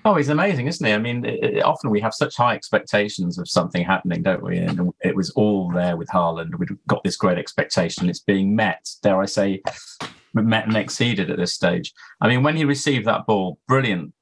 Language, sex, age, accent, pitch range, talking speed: English, male, 30-49, British, 95-110 Hz, 210 wpm